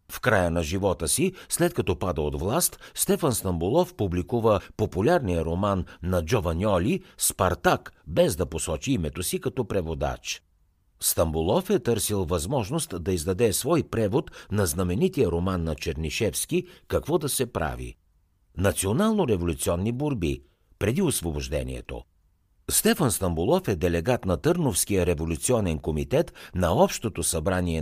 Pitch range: 80-115 Hz